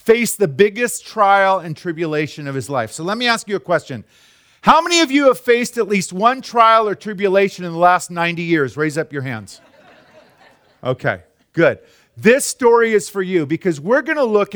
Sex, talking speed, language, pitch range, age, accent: male, 200 wpm, English, 155-210 Hz, 40-59, American